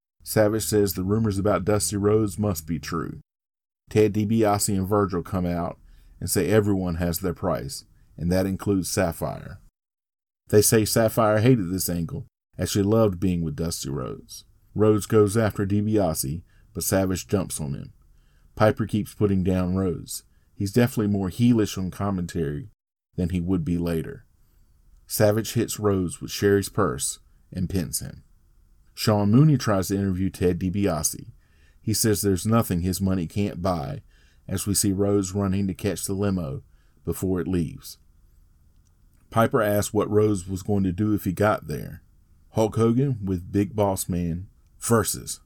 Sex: male